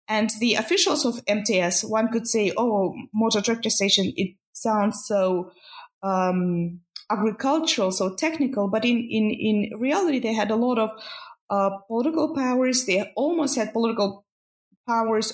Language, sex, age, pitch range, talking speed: English, female, 20-39, 195-250 Hz, 145 wpm